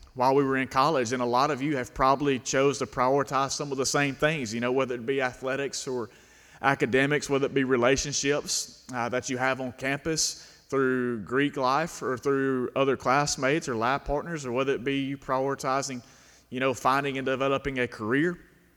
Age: 30-49